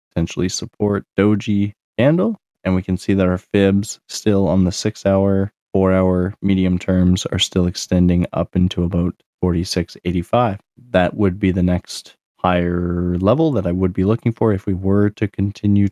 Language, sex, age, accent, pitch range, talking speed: English, male, 20-39, American, 95-110 Hz, 170 wpm